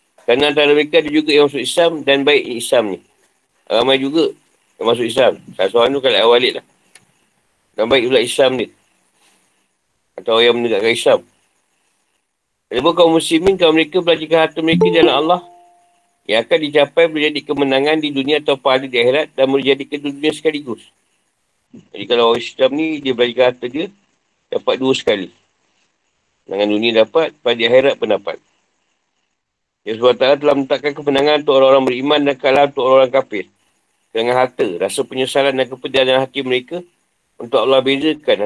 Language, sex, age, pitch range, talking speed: Malay, male, 50-69, 130-165 Hz, 155 wpm